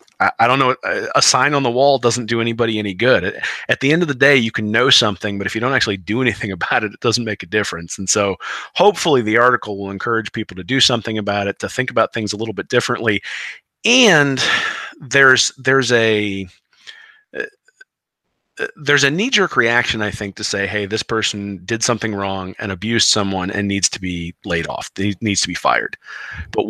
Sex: male